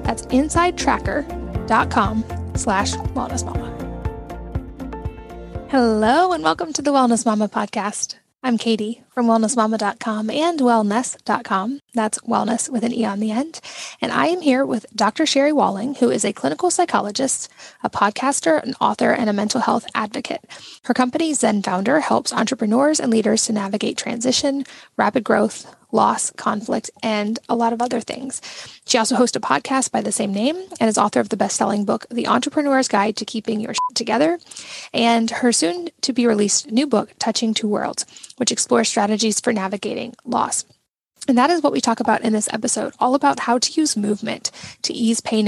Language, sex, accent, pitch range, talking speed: English, female, American, 215-265 Hz, 170 wpm